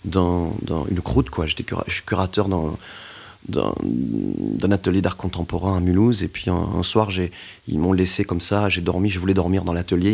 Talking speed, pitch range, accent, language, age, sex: 205 wpm, 90-110 Hz, French, French, 30-49, male